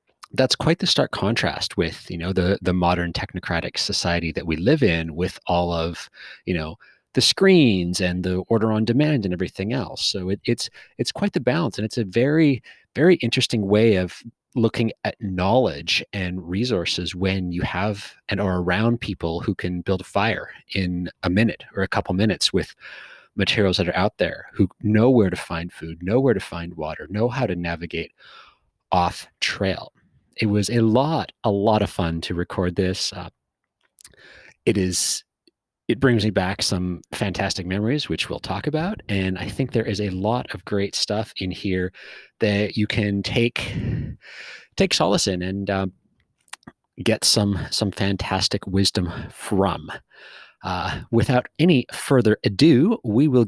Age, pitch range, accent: 30-49, 90-115 Hz, American